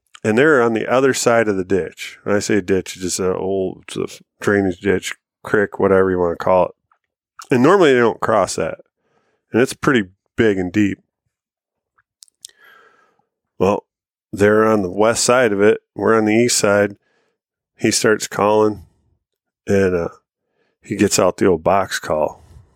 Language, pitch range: English, 95-115 Hz